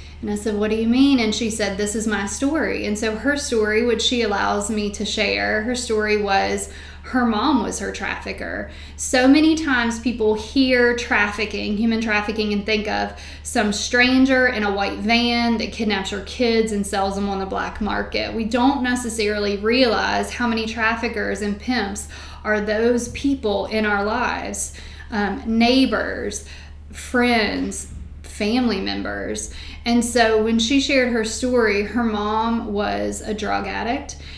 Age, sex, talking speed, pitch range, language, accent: 20-39, female, 160 wpm, 205-235 Hz, English, American